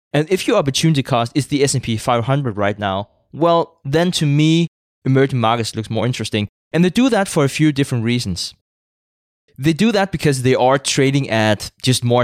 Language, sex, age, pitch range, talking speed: English, male, 20-39, 110-150 Hz, 190 wpm